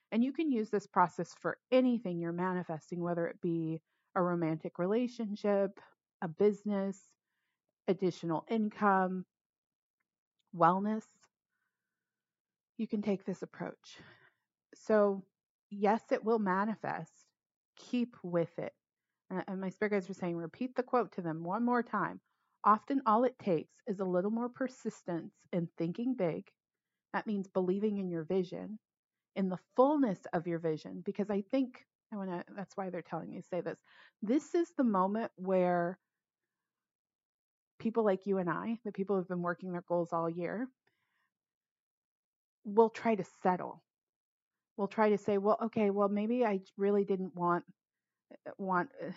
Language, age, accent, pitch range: English, 30-49, American, 180-220 Hz